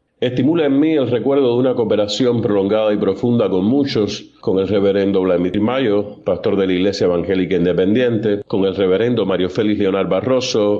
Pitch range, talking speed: 100-135 Hz, 170 wpm